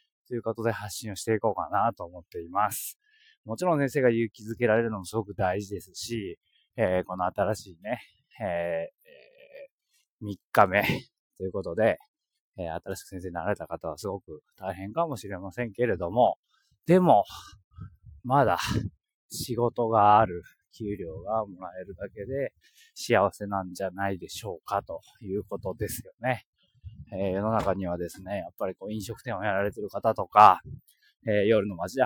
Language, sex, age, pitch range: Japanese, male, 20-39, 100-135 Hz